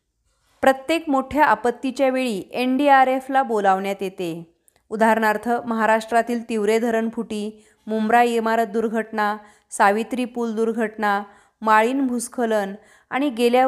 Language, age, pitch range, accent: Marathi, 30-49, 210-255 Hz, native